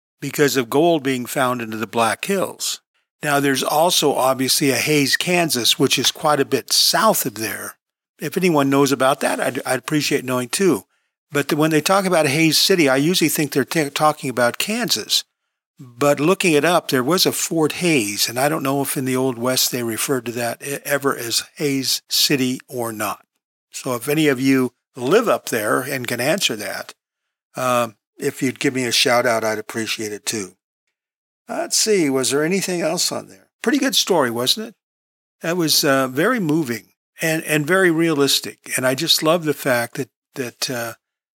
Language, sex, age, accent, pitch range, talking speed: English, male, 50-69, American, 125-155 Hz, 190 wpm